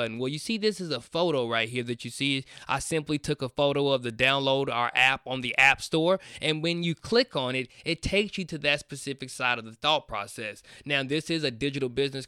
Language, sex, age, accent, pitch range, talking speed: English, male, 20-39, American, 130-160 Hz, 240 wpm